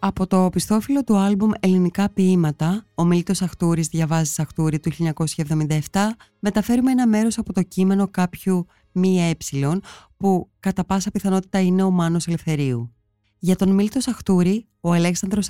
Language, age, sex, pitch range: Greek, 20-39, female, 155-195 Hz